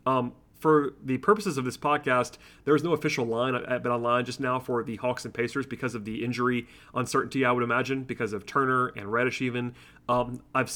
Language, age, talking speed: English, 30-49, 205 wpm